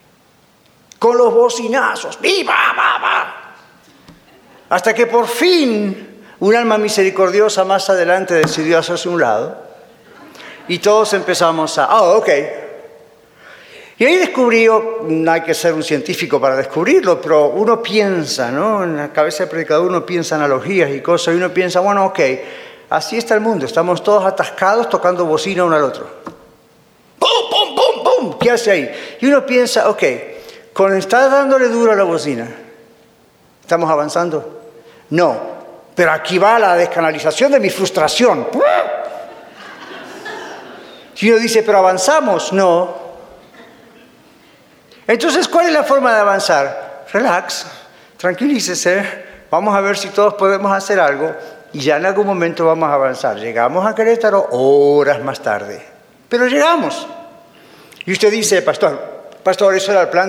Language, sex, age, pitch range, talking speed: Spanish, male, 50-69, 170-235 Hz, 145 wpm